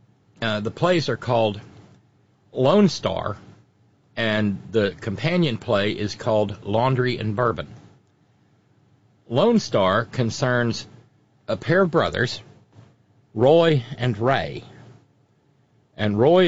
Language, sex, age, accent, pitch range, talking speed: English, male, 50-69, American, 105-130 Hz, 100 wpm